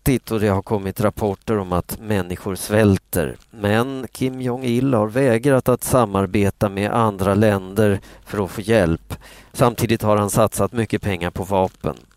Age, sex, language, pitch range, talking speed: 40-59, male, Swedish, 95-115 Hz, 155 wpm